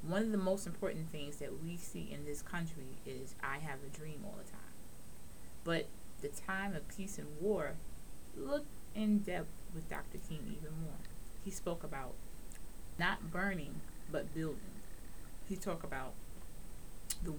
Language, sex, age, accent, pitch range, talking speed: English, female, 20-39, American, 145-190 Hz, 160 wpm